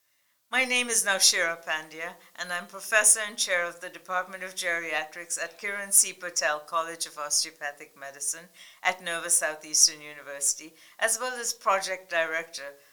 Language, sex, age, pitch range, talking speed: English, female, 60-79, 160-200 Hz, 150 wpm